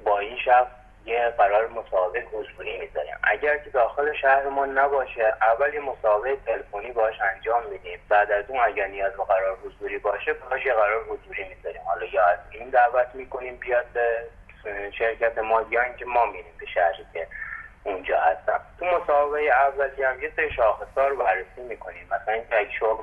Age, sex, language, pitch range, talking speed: 30-49, male, Persian, 105-150 Hz, 160 wpm